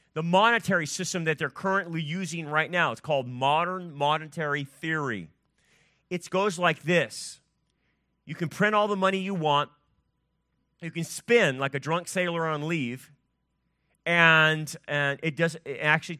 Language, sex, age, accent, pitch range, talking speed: English, male, 30-49, American, 155-190 Hz, 145 wpm